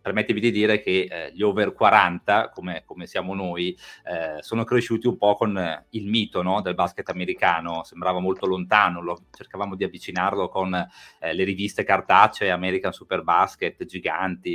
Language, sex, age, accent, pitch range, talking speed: Italian, male, 30-49, native, 90-110 Hz, 170 wpm